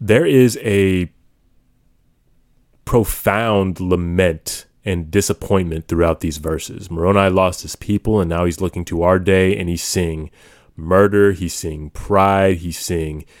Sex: male